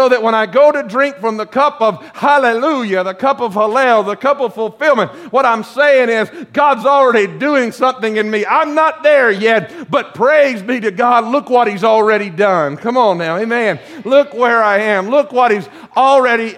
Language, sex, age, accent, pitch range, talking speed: English, male, 50-69, American, 185-245 Hz, 205 wpm